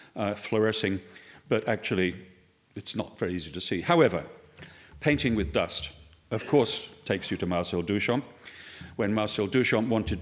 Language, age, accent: English, 40-59, British